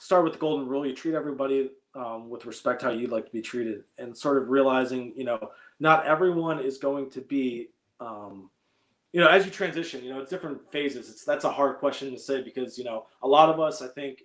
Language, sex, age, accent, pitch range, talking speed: English, male, 20-39, American, 125-150 Hz, 235 wpm